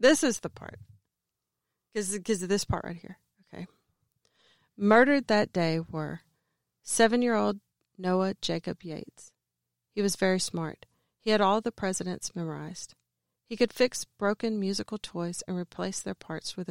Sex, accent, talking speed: female, American, 145 wpm